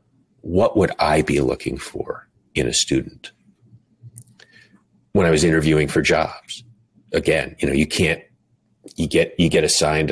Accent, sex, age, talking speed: American, male, 40-59, 150 wpm